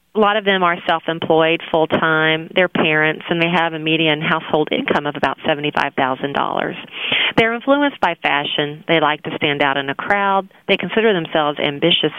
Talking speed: 170 wpm